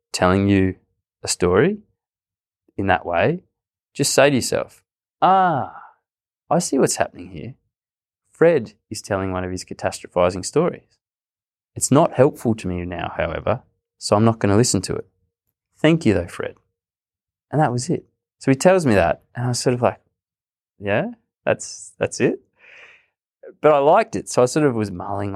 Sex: male